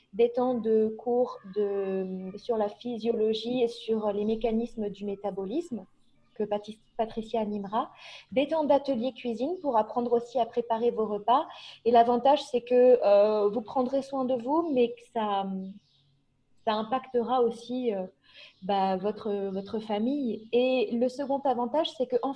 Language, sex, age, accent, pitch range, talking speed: French, female, 20-39, French, 220-265 Hz, 150 wpm